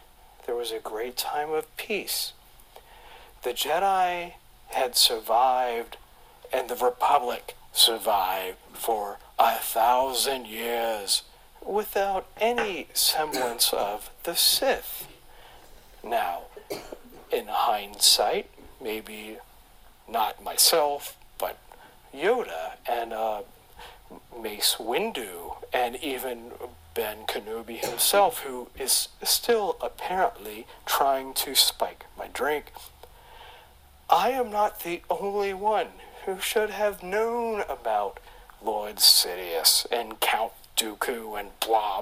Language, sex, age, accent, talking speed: English, male, 50-69, American, 100 wpm